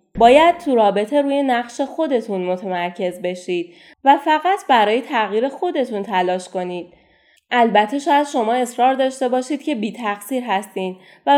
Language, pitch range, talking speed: Persian, 200-300 Hz, 135 wpm